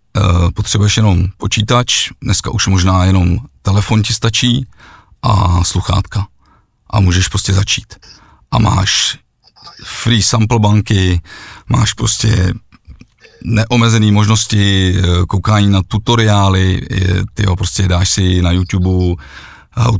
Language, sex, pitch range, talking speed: Czech, male, 90-115 Hz, 110 wpm